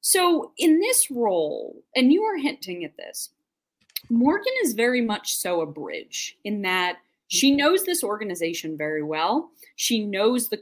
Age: 20-39